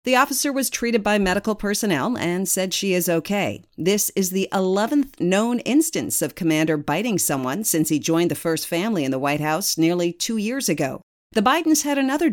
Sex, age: female, 50-69